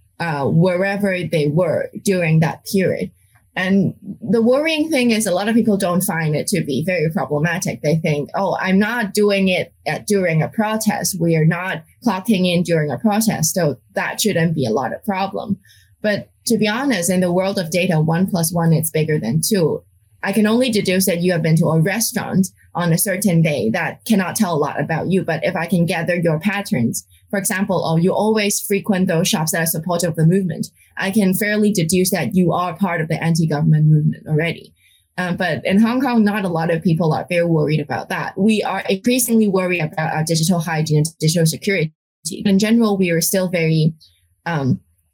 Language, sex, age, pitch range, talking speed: English, female, 20-39, 160-205 Hz, 205 wpm